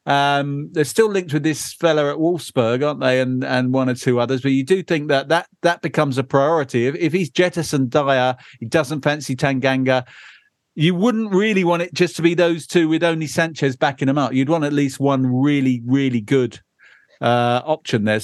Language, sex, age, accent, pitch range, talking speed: English, male, 50-69, British, 130-170 Hz, 205 wpm